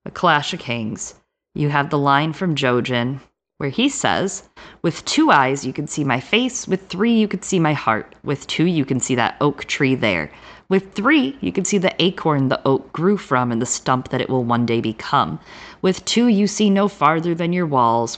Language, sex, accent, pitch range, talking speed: English, female, American, 130-185 Hz, 220 wpm